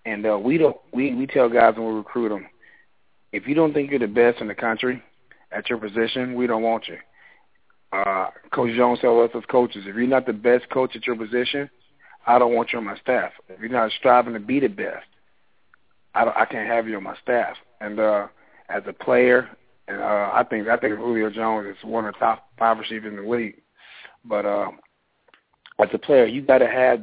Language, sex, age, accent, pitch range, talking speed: English, male, 40-59, American, 105-120 Hz, 225 wpm